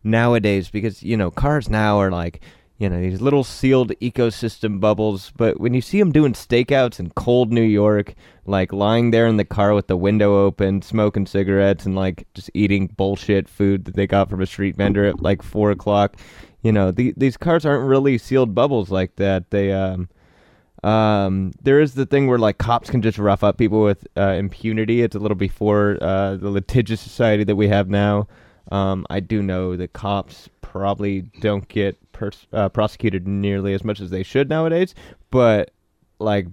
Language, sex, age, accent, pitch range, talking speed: English, male, 20-39, American, 95-110 Hz, 190 wpm